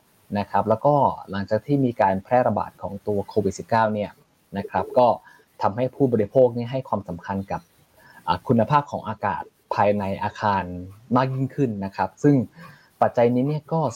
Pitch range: 105-140 Hz